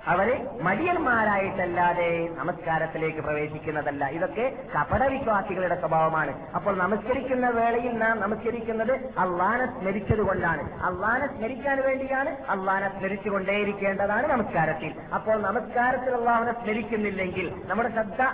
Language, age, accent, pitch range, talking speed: Malayalam, 20-39, native, 170-220 Hz, 90 wpm